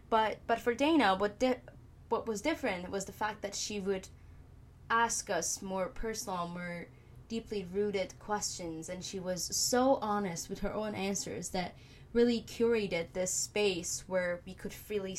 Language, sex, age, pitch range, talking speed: English, female, 10-29, 175-210 Hz, 160 wpm